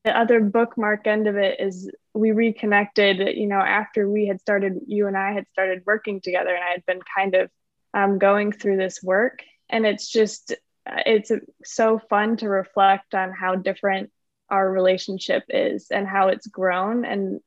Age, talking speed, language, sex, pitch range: 10-29, 180 wpm, English, female, 195-220 Hz